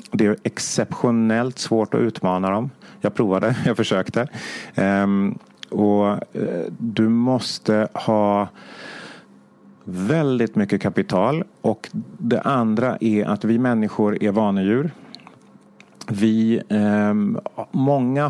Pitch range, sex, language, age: 105-130 Hz, male, English, 30-49